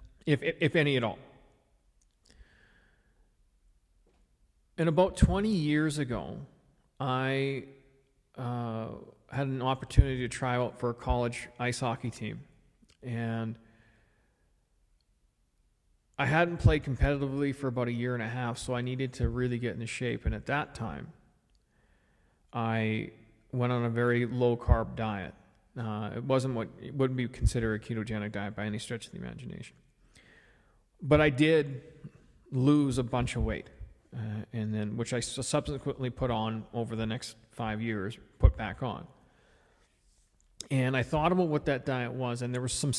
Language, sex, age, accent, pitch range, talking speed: English, male, 40-59, American, 110-135 Hz, 155 wpm